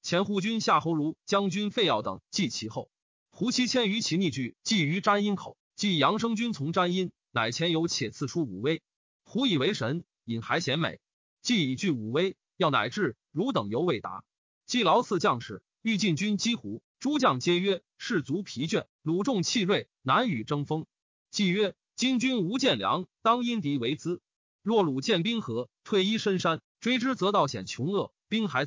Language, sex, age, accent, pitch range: Chinese, male, 30-49, native, 155-220 Hz